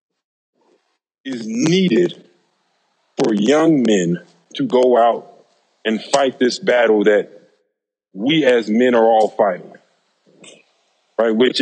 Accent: American